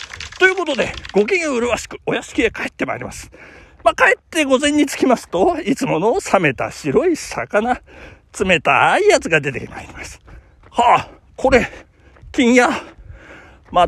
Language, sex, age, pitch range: Japanese, male, 40-59, 240-390 Hz